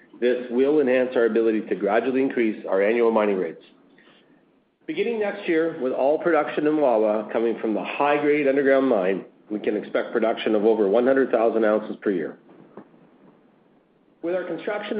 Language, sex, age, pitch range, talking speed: English, male, 40-59, 115-160 Hz, 155 wpm